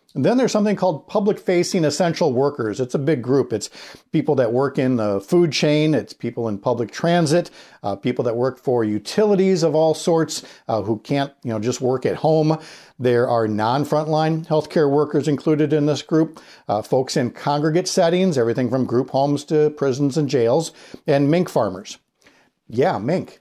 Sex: male